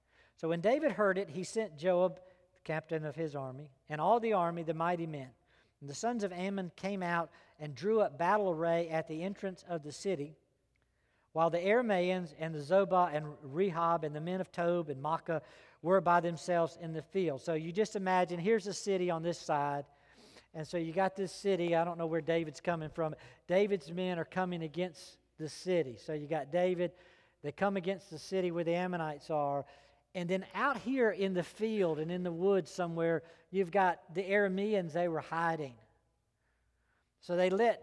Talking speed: 195 wpm